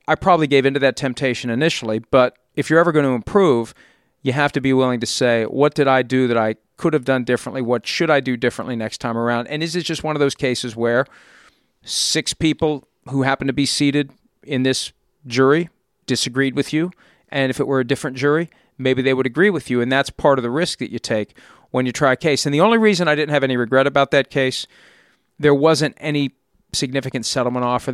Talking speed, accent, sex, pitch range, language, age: 230 wpm, American, male, 120-145 Hz, English, 40-59